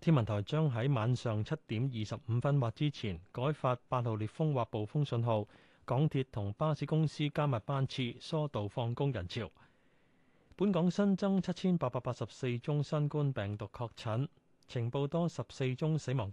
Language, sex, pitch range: Chinese, male, 120-155 Hz